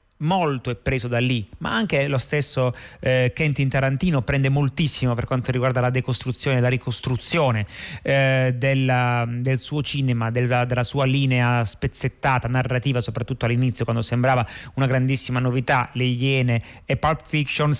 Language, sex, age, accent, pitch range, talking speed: Italian, male, 30-49, native, 125-145 Hz, 150 wpm